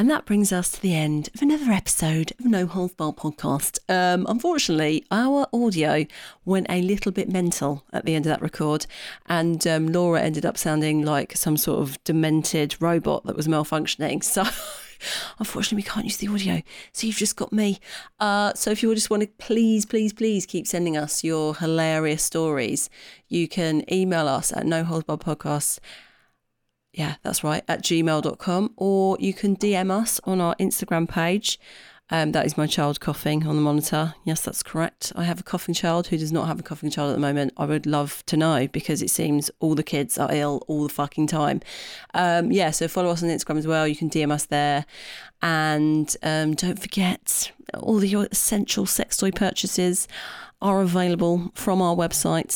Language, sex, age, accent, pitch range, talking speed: English, female, 30-49, British, 155-195 Hz, 190 wpm